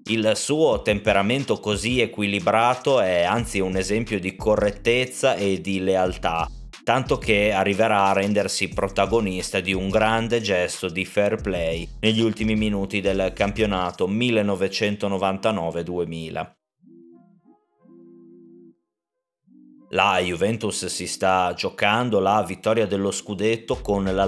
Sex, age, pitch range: male, 30-49, 95-110 Hz